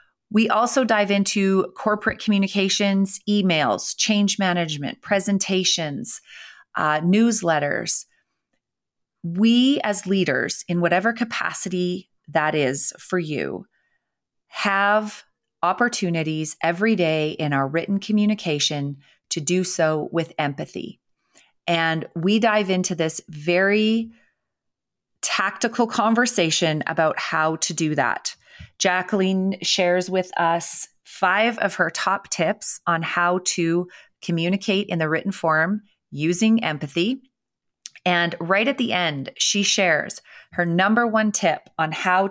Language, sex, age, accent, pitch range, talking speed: English, female, 30-49, American, 165-205 Hz, 115 wpm